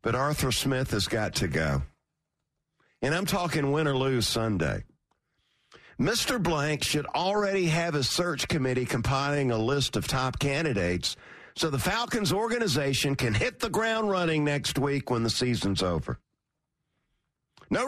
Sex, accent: male, American